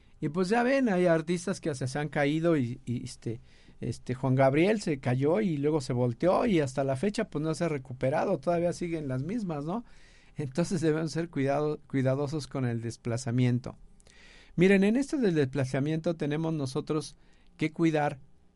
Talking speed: 170 wpm